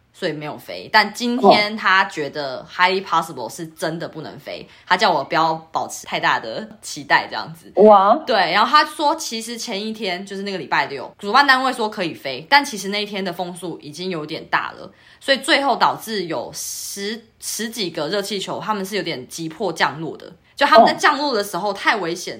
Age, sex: 20-39, female